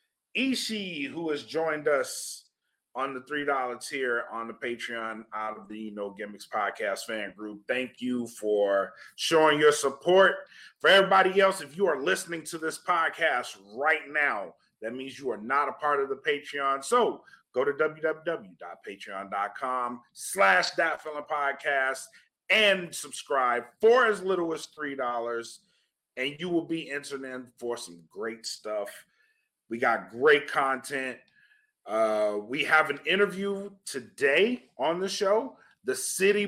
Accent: American